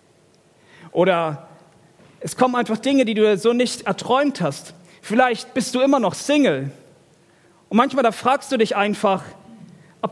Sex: male